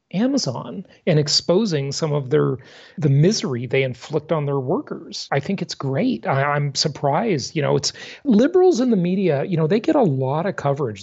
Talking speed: 190 wpm